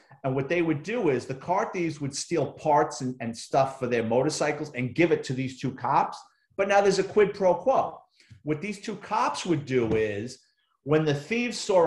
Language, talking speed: English, 220 wpm